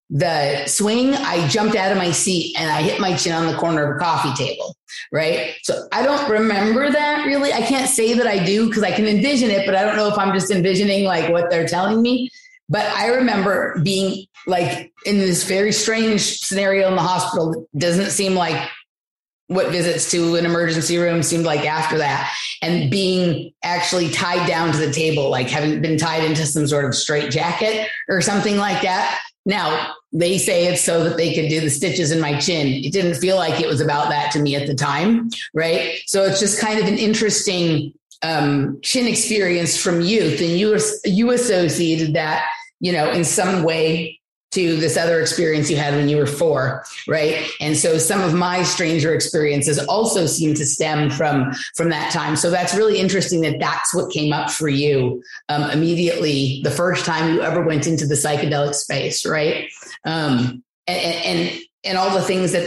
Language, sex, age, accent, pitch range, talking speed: English, female, 30-49, American, 155-195 Hz, 200 wpm